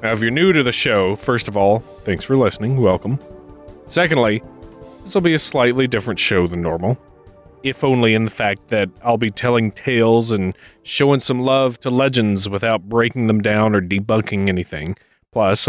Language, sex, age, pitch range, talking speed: English, male, 30-49, 105-155 Hz, 185 wpm